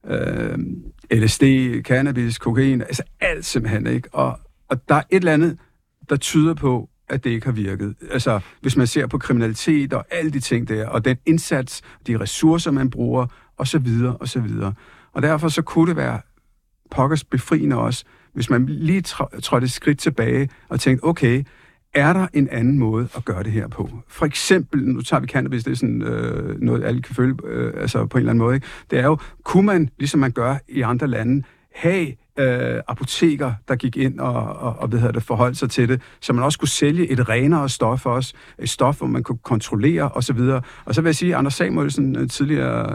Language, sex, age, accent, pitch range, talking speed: Danish, male, 60-79, native, 125-160 Hz, 205 wpm